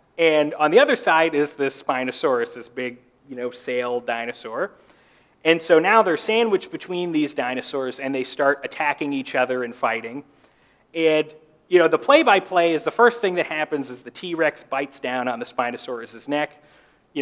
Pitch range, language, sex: 130-175 Hz, English, male